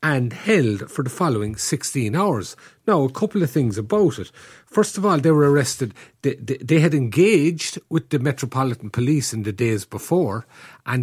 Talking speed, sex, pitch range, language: 185 wpm, male, 115-150 Hz, English